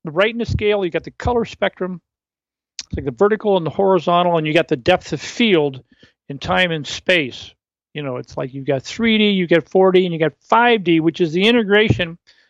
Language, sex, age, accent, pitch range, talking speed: English, male, 50-69, American, 145-185 Hz, 220 wpm